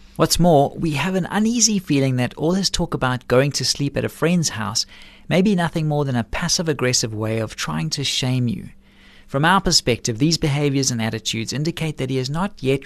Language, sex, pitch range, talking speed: English, male, 115-160 Hz, 210 wpm